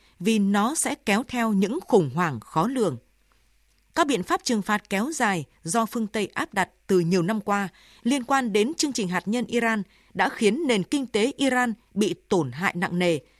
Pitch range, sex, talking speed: 185-240 Hz, female, 200 wpm